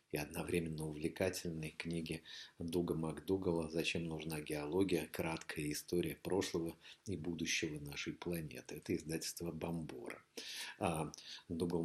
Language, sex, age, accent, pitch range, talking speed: Russian, male, 40-59, native, 85-115 Hz, 95 wpm